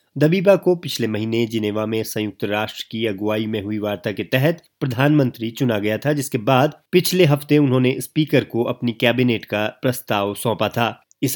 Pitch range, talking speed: 110-135 Hz, 175 wpm